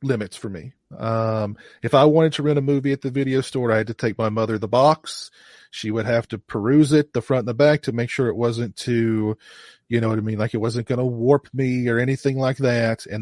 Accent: American